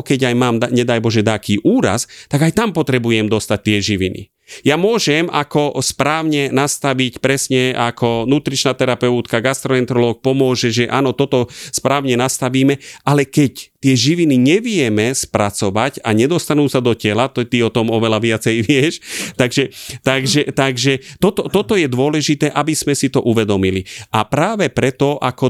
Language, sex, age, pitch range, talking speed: Slovak, male, 30-49, 110-140 Hz, 150 wpm